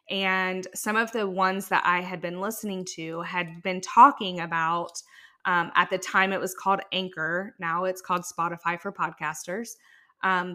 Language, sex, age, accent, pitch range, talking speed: English, female, 20-39, American, 175-200 Hz, 170 wpm